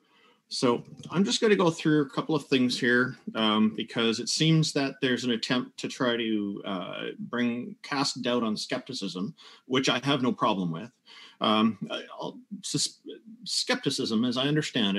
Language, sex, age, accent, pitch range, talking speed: English, male, 40-59, American, 110-160 Hz, 160 wpm